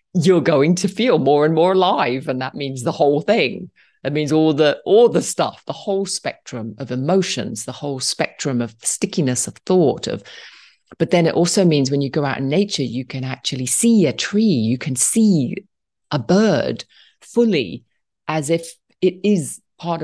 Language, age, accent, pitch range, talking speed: English, 40-59, British, 125-160 Hz, 185 wpm